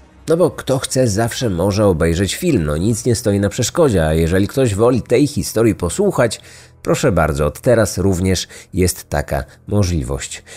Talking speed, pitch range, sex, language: 165 wpm, 95-130 Hz, male, Polish